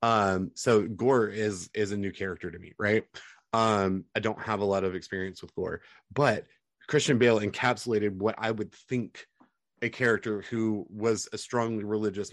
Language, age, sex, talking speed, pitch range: English, 30-49, male, 175 wpm, 95-110 Hz